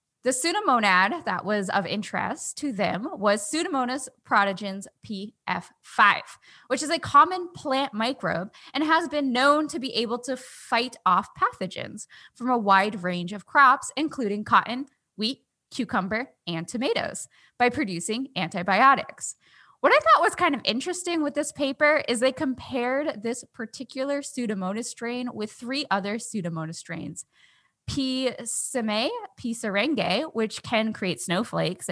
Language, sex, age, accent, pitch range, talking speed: English, female, 10-29, American, 200-285 Hz, 140 wpm